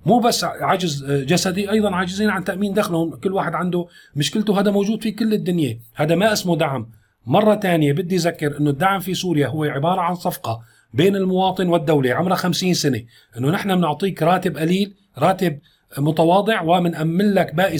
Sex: male